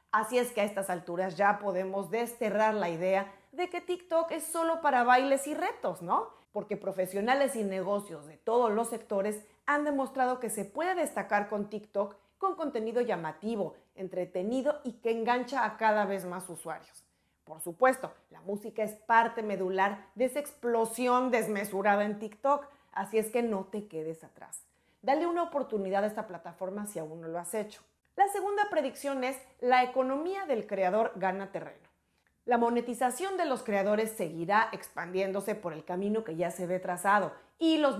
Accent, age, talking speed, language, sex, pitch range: Mexican, 40-59, 170 wpm, Spanish, female, 190-250 Hz